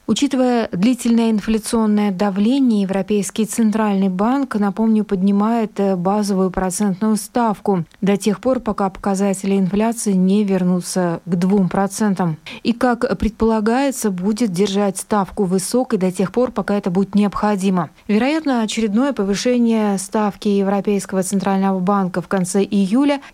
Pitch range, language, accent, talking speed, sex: 190-225 Hz, Russian, native, 120 wpm, female